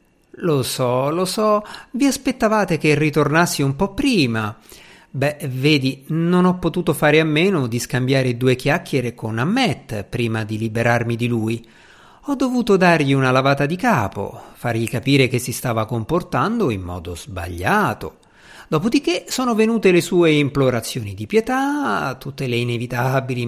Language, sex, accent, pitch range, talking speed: Italian, male, native, 120-165 Hz, 145 wpm